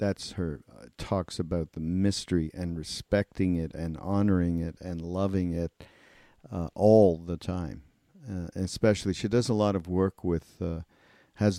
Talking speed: 160 wpm